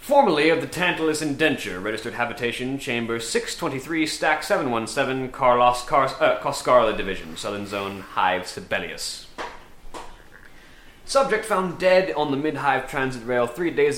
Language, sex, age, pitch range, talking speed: English, male, 20-39, 115-145 Hz, 130 wpm